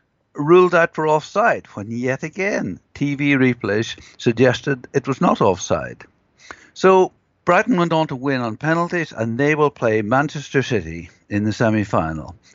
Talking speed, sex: 150 wpm, male